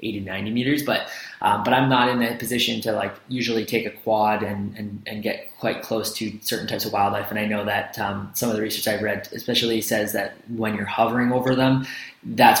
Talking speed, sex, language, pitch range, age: 230 wpm, male, English, 105-120 Hz, 20-39